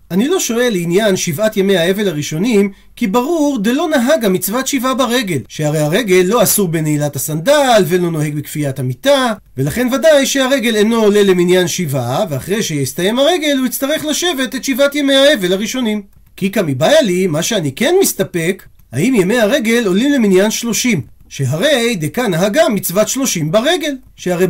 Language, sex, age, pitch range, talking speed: Hebrew, male, 40-59, 180-255 Hz, 155 wpm